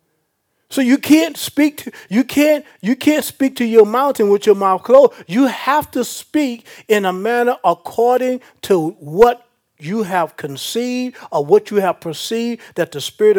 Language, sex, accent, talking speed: English, male, American, 170 wpm